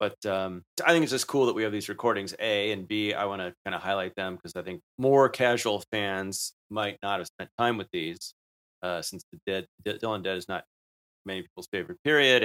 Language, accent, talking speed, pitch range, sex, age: English, American, 225 wpm, 85-105 Hz, male, 30-49